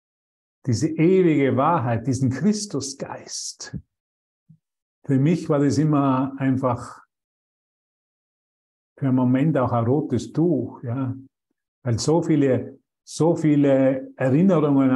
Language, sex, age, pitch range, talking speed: German, male, 50-69, 120-145 Hz, 100 wpm